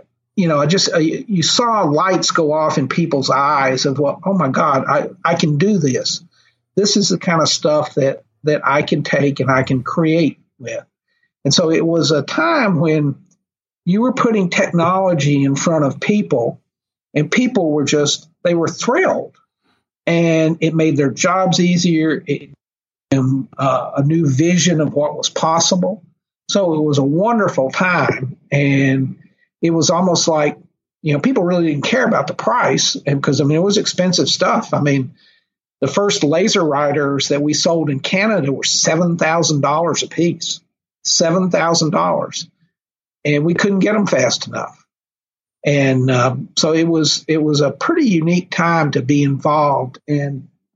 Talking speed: 175 wpm